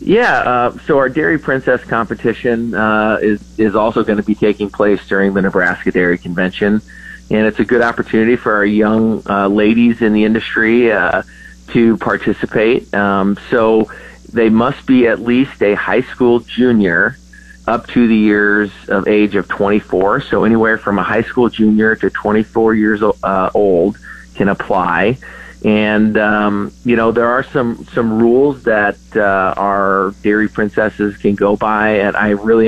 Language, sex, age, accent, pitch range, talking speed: English, male, 30-49, American, 100-115 Hz, 165 wpm